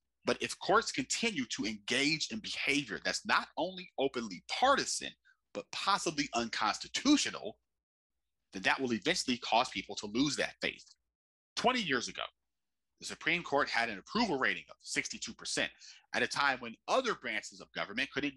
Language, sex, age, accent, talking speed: English, male, 30-49, American, 155 wpm